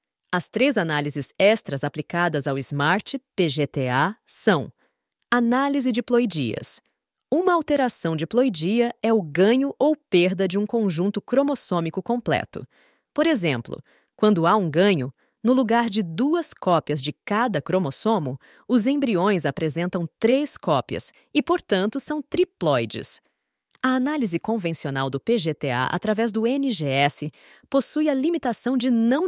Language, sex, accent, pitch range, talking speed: Portuguese, female, Brazilian, 165-245 Hz, 125 wpm